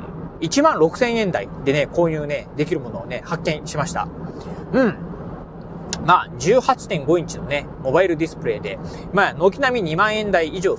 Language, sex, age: Japanese, male, 30-49